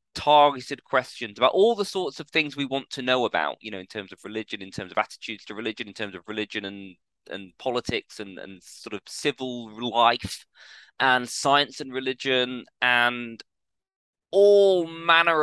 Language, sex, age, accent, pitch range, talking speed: English, male, 20-39, British, 110-150 Hz, 175 wpm